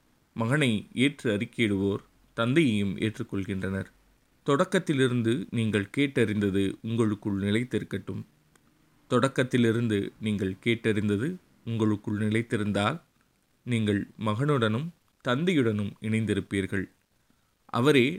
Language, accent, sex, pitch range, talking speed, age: Tamil, native, male, 100-120 Hz, 65 wpm, 30-49